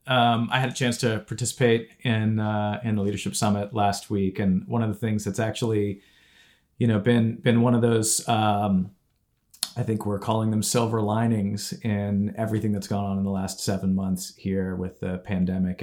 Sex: male